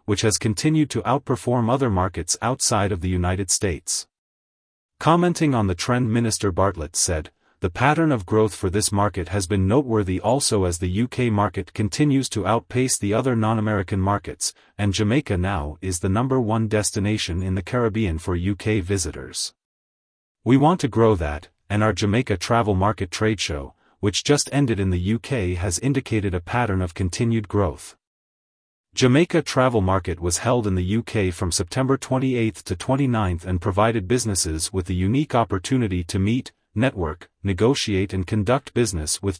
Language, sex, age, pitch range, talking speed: English, male, 40-59, 95-120 Hz, 165 wpm